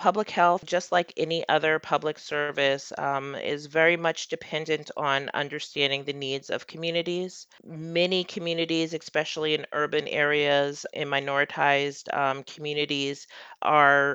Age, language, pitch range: 30-49, English, 135-155 Hz